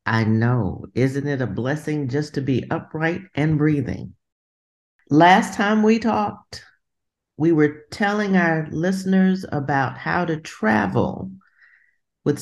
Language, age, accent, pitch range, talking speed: English, 50-69, American, 145-195 Hz, 125 wpm